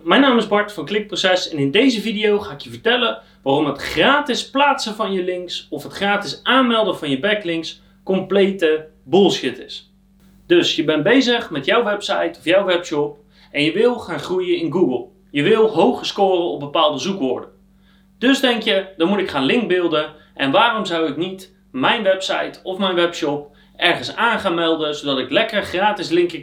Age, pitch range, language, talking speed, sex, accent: 30-49, 155-220 Hz, Dutch, 185 wpm, male, Dutch